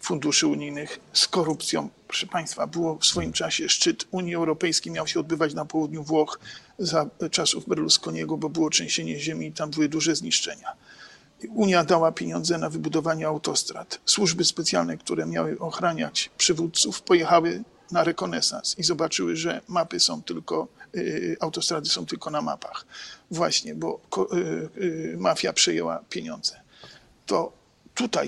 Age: 50-69